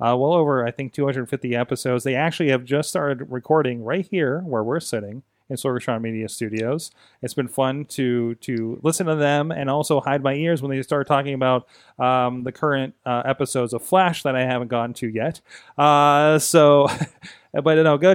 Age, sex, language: 30-49, male, English